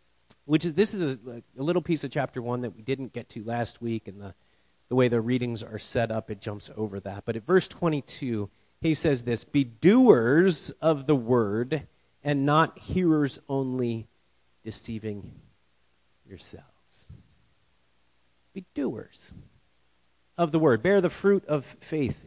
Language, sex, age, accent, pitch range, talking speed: English, male, 40-59, American, 95-155 Hz, 160 wpm